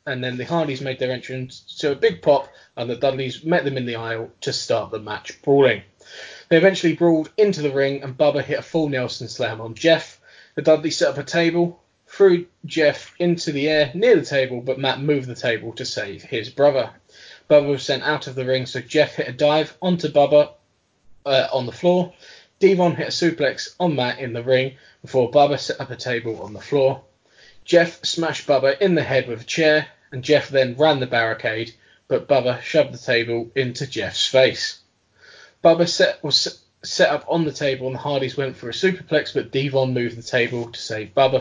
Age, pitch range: 20-39, 125-160 Hz